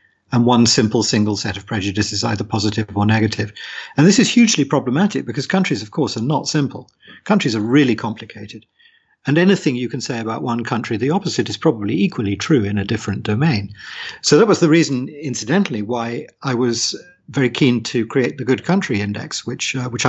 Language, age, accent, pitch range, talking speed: English, 50-69, British, 115-150 Hz, 195 wpm